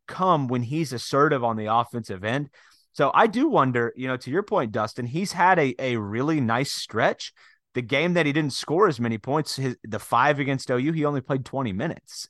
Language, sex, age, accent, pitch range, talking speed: English, male, 30-49, American, 110-140 Hz, 215 wpm